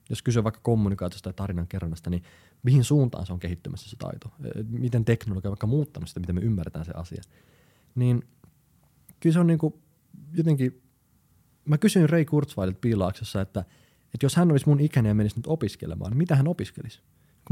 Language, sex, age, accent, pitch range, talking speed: Finnish, male, 20-39, native, 105-160 Hz, 180 wpm